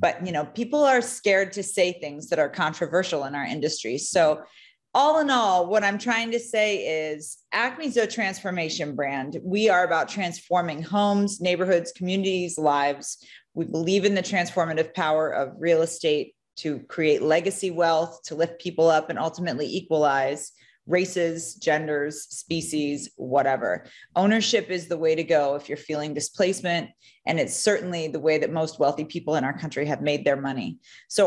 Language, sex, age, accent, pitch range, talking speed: English, female, 30-49, American, 155-195 Hz, 165 wpm